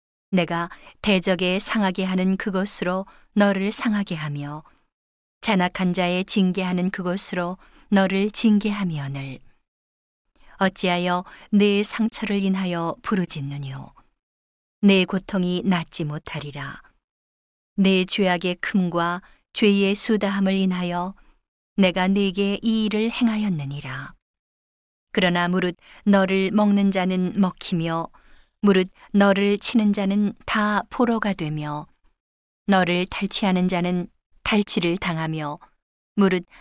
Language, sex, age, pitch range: Korean, female, 40-59, 170-200 Hz